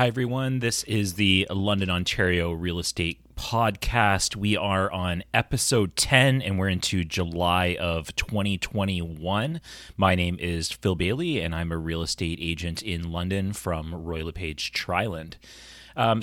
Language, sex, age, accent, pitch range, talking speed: English, male, 30-49, American, 85-110 Hz, 145 wpm